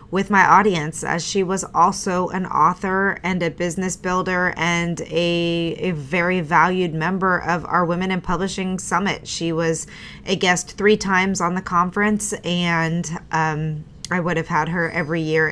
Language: English